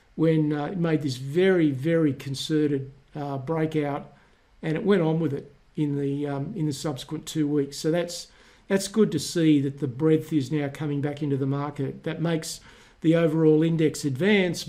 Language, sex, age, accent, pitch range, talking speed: English, male, 50-69, Australian, 140-165 Hz, 190 wpm